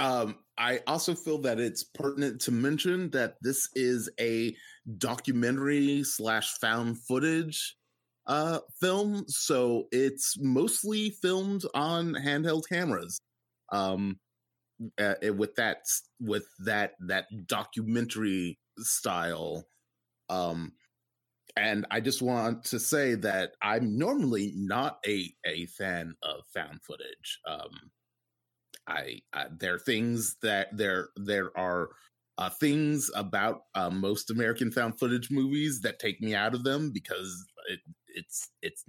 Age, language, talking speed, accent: 30-49, English, 125 wpm, American